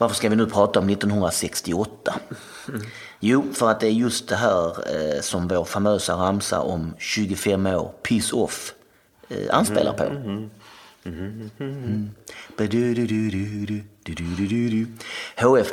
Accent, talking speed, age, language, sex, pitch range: native, 115 wpm, 30-49, Swedish, male, 95-115 Hz